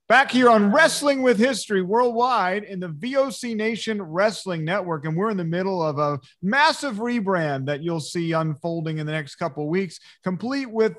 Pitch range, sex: 150-195 Hz, male